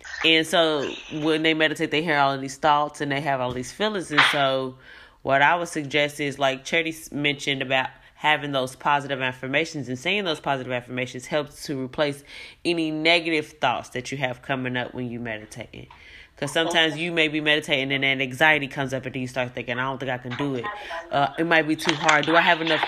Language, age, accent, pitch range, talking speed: English, 10-29, American, 140-170 Hz, 220 wpm